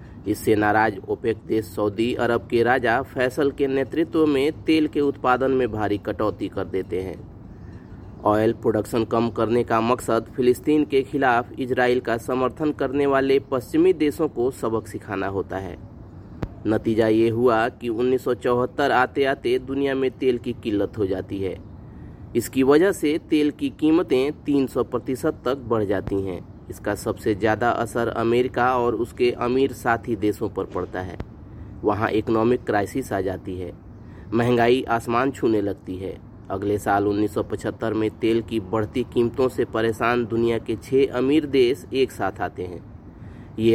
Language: Hindi